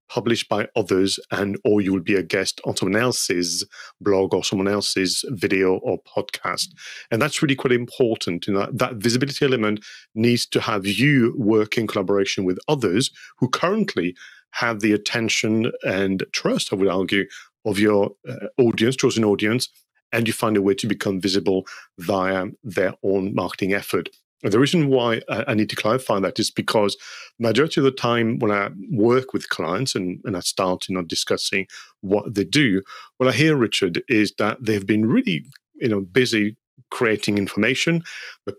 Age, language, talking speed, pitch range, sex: 40-59, English, 170 wpm, 100-120 Hz, male